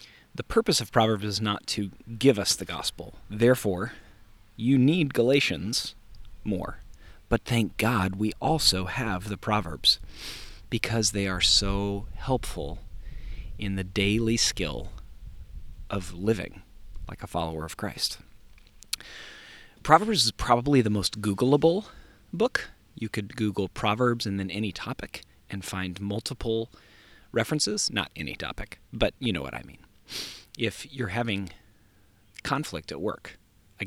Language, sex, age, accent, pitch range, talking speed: English, male, 40-59, American, 95-115 Hz, 135 wpm